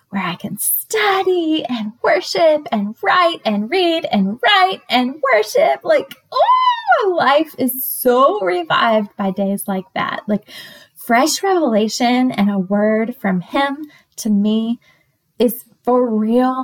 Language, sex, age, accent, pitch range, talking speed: English, female, 10-29, American, 205-295 Hz, 135 wpm